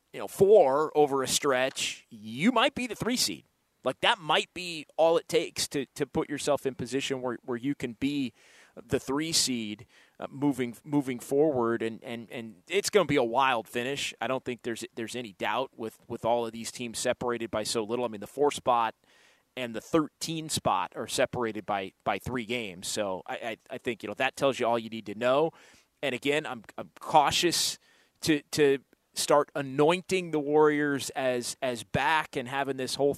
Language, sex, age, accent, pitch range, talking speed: English, male, 30-49, American, 120-155 Hz, 205 wpm